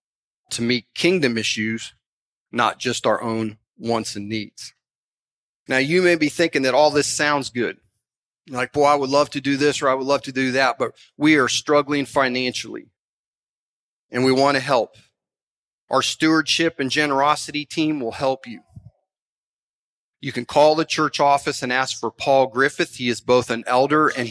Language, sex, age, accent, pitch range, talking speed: English, male, 40-59, American, 125-145 Hz, 175 wpm